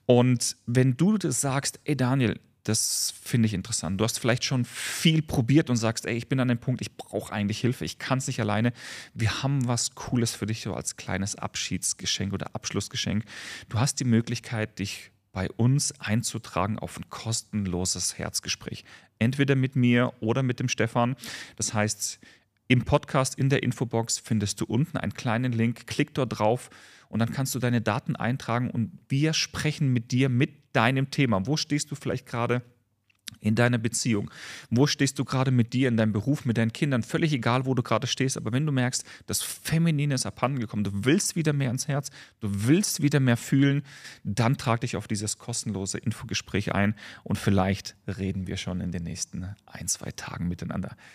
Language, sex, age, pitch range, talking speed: German, male, 40-59, 105-135 Hz, 190 wpm